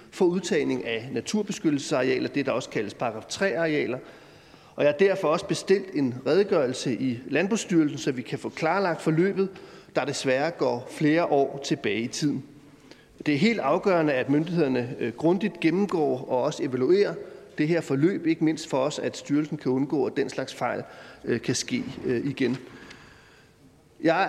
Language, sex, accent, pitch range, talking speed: Danish, male, native, 140-180 Hz, 160 wpm